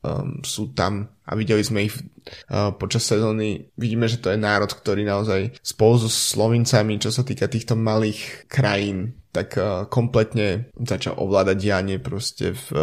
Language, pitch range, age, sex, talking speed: Slovak, 105-125 Hz, 20-39, male, 155 wpm